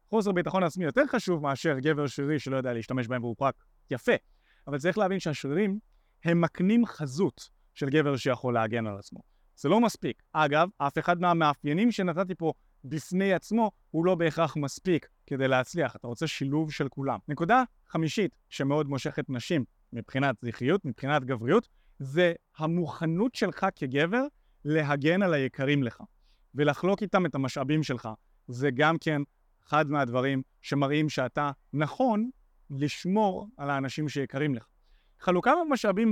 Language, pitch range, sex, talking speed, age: Hebrew, 130-175 Hz, male, 145 wpm, 30-49